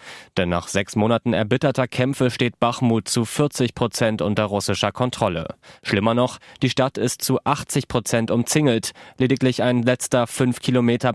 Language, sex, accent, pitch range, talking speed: German, male, German, 110-125 Hz, 150 wpm